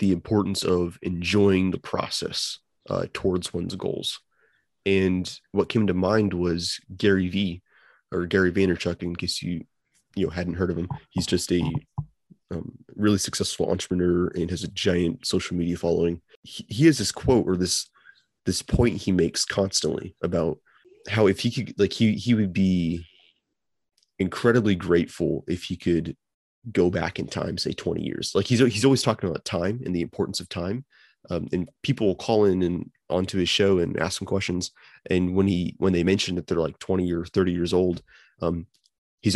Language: English